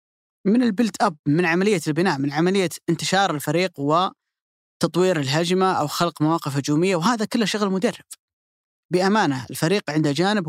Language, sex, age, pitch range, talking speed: Arabic, female, 30-49, 140-175 Hz, 135 wpm